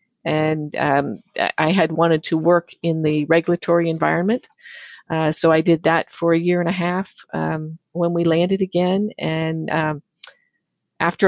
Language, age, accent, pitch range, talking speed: English, 50-69, American, 160-185 Hz, 160 wpm